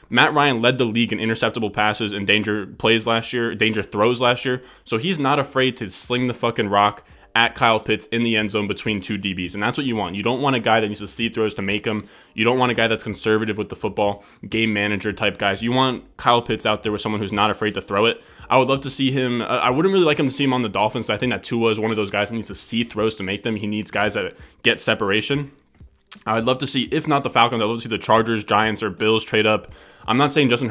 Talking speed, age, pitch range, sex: 285 wpm, 20-39, 105-120 Hz, male